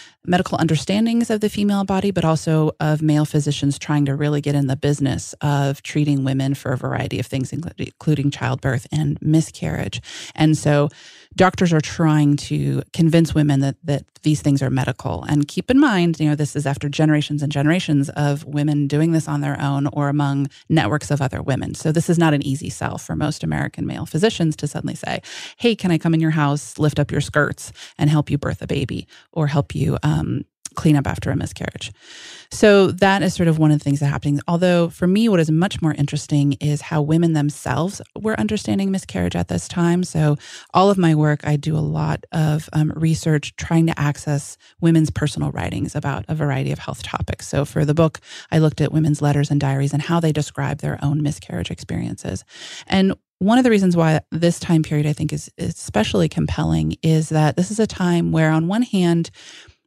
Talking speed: 205 wpm